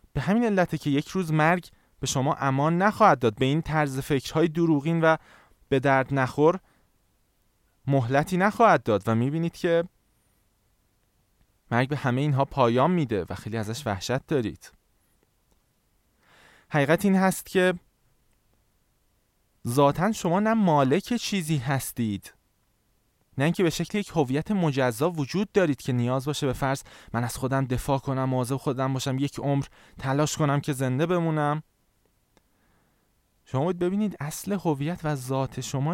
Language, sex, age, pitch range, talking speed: Persian, male, 20-39, 125-165 Hz, 140 wpm